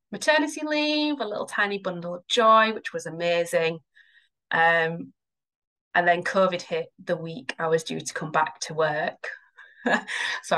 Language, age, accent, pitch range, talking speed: English, 20-39, British, 160-190 Hz, 155 wpm